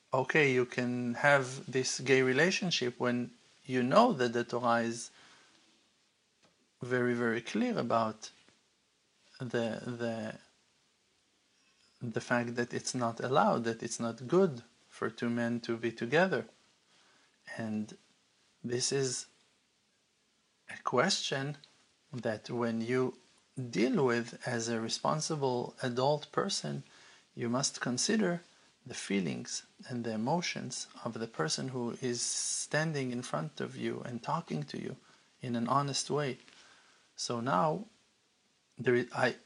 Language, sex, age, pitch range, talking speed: English, male, 50-69, 120-135 Hz, 120 wpm